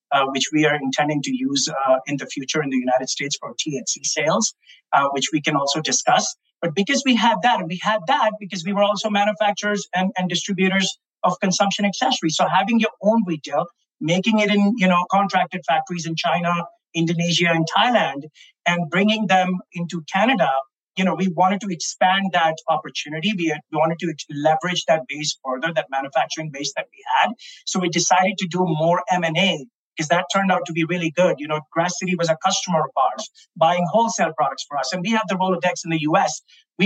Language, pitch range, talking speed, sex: English, 160-200 Hz, 210 wpm, male